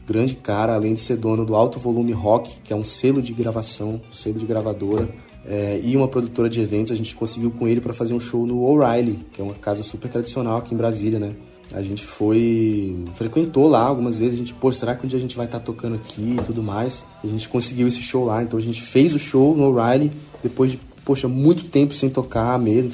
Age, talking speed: 20-39, 240 wpm